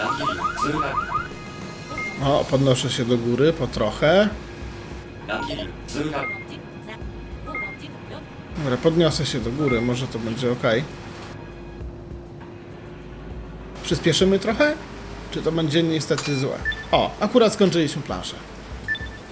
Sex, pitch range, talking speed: male, 125-170 Hz, 85 wpm